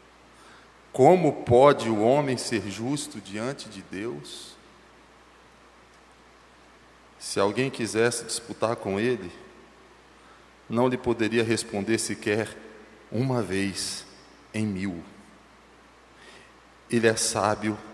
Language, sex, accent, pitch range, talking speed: Portuguese, male, Brazilian, 105-135 Hz, 90 wpm